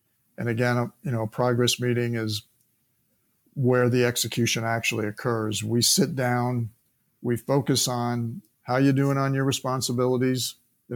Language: English